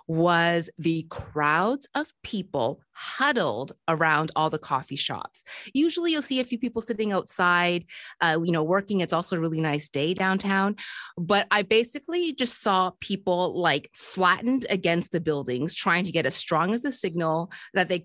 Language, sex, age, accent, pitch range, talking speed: English, female, 30-49, American, 160-215 Hz, 170 wpm